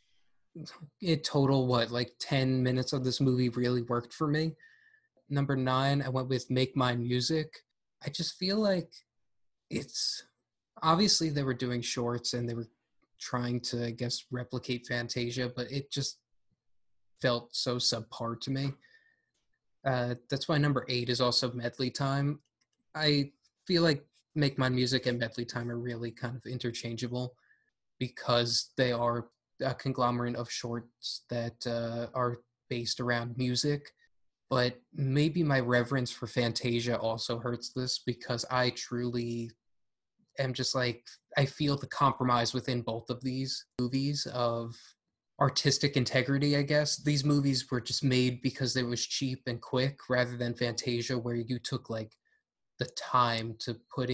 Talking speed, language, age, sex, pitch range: 150 wpm, English, 20-39, male, 120-140 Hz